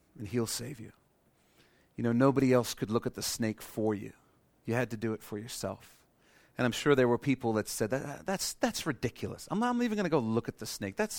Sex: male